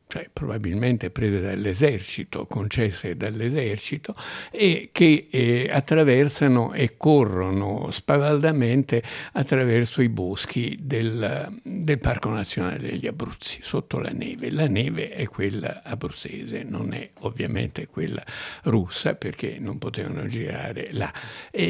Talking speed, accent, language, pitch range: 115 wpm, native, Italian, 110-145 Hz